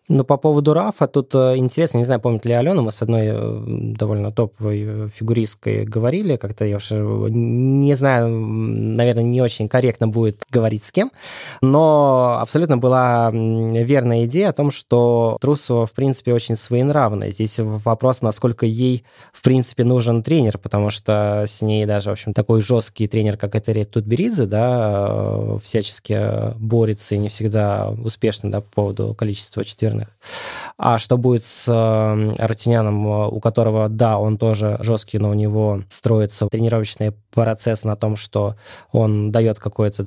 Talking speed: 155 wpm